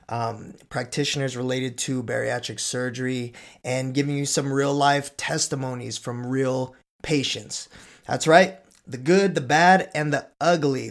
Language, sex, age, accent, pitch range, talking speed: English, male, 20-39, American, 125-150 Hz, 140 wpm